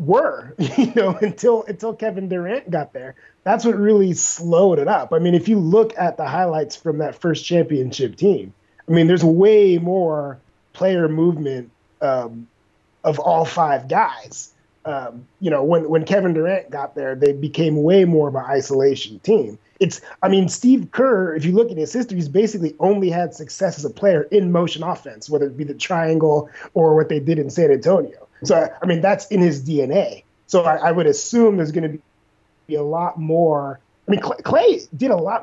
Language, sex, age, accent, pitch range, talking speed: English, male, 30-49, American, 145-195 Hz, 200 wpm